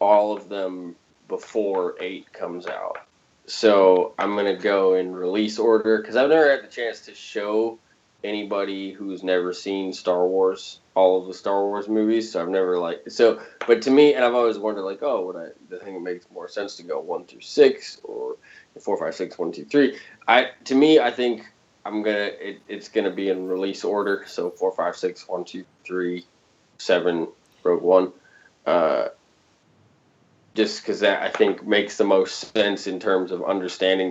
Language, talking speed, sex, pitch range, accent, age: English, 190 wpm, male, 95-115 Hz, American, 20-39